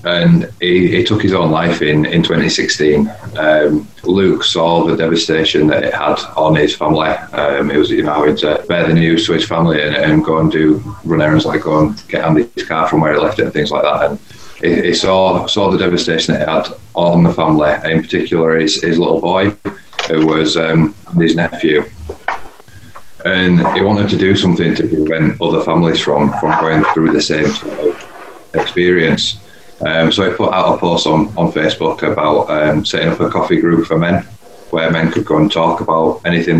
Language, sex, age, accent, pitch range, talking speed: English, male, 30-49, British, 80-85 Hz, 205 wpm